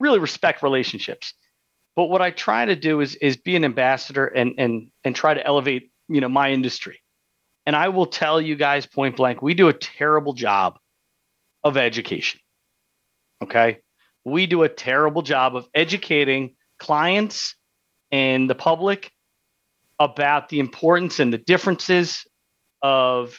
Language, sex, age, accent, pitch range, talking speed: English, male, 40-59, American, 140-180 Hz, 150 wpm